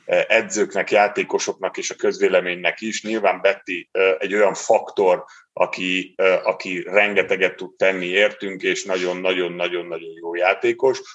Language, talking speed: Hungarian, 120 wpm